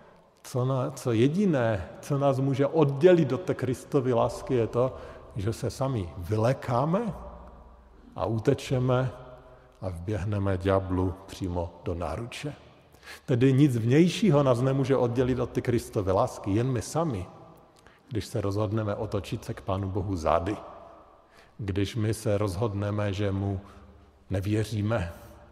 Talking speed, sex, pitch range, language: 130 wpm, male, 95-120 Hz, Slovak